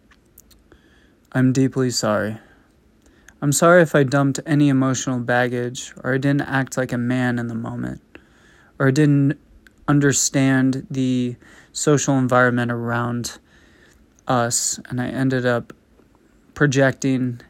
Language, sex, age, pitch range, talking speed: English, male, 20-39, 120-140 Hz, 120 wpm